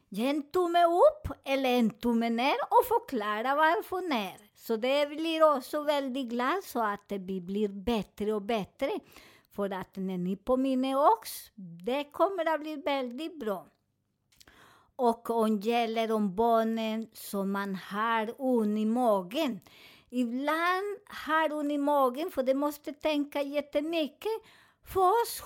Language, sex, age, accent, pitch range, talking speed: Swedish, male, 50-69, American, 225-290 Hz, 140 wpm